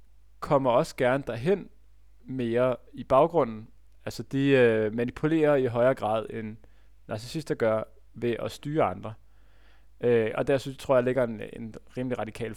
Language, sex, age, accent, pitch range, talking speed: Danish, male, 20-39, native, 105-125 Hz, 150 wpm